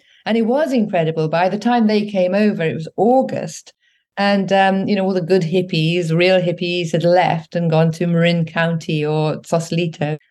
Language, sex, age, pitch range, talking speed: English, female, 40-59, 165-200 Hz, 185 wpm